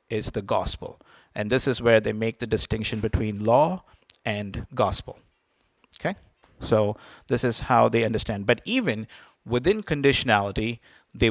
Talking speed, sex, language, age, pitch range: 145 wpm, male, English, 50-69, 110-130 Hz